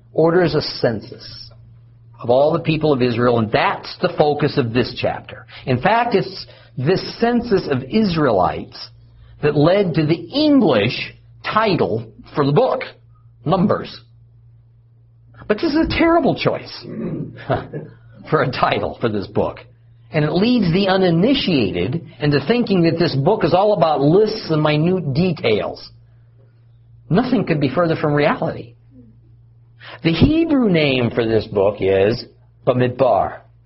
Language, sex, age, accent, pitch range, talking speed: English, male, 50-69, American, 115-170 Hz, 135 wpm